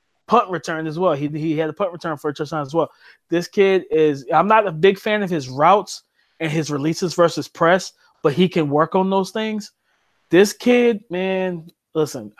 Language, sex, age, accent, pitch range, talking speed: English, male, 20-39, American, 145-170 Hz, 205 wpm